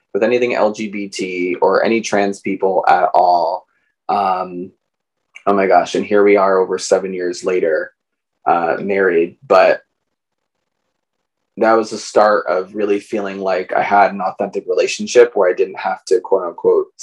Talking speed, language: 155 wpm, English